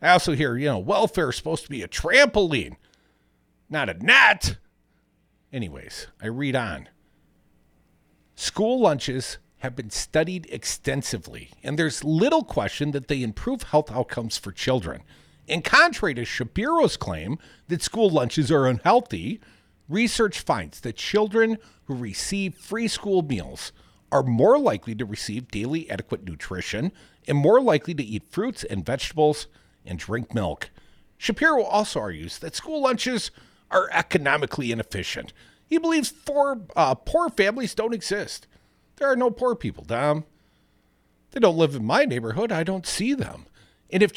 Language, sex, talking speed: English, male, 145 wpm